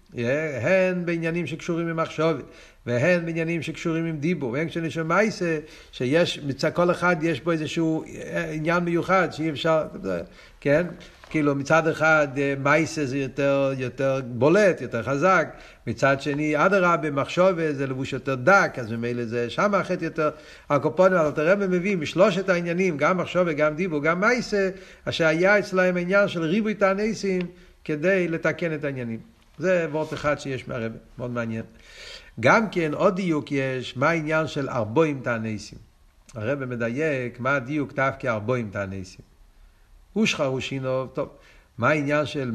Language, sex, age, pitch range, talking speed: Hebrew, male, 60-79, 125-165 Hz, 150 wpm